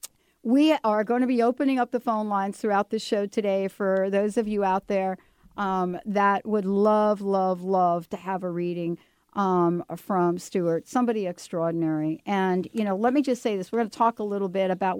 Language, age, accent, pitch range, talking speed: English, 50-69, American, 180-215 Hz, 205 wpm